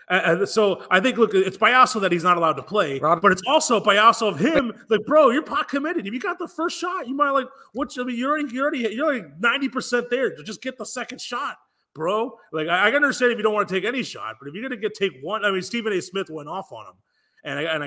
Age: 30-49